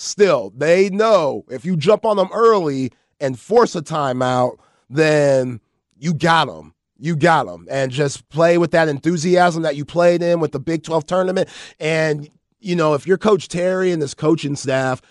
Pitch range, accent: 140-170 Hz, American